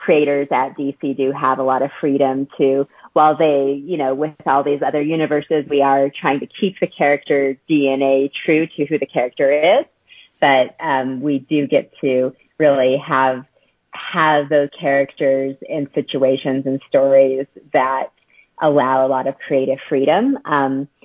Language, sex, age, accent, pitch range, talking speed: English, female, 30-49, American, 135-155 Hz, 160 wpm